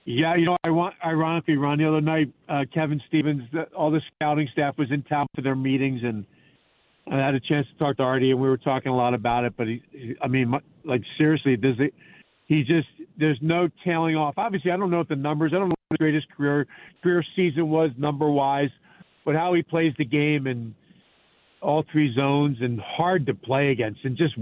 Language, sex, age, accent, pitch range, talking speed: English, male, 50-69, American, 140-160 Hz, 225 wpm